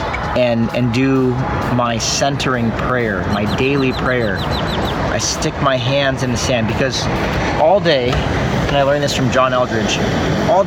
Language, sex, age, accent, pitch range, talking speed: English, male, 40-59, American, 105-135 Hz, 150 wpm